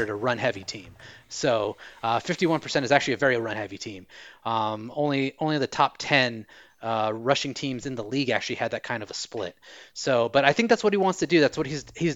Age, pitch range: 30-49, 120-155 Hz